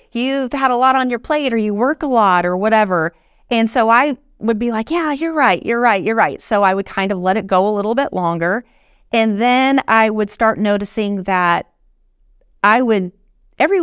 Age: 30-49